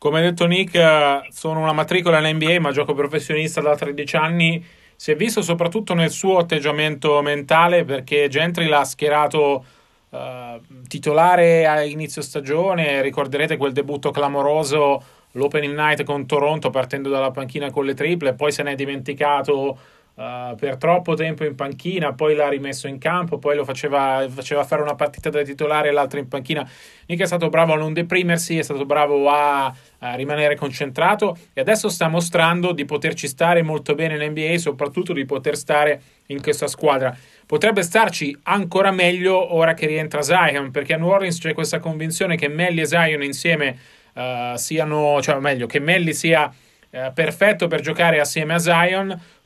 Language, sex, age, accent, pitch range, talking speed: Italian, male, 30-49, native, 145-165 Hz, 170 wpm